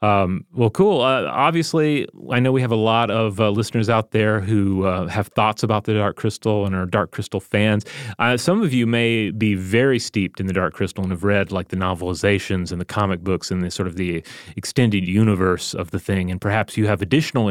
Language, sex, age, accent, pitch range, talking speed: English, male, 30-49, American, 100-120 Hz, 225 wpm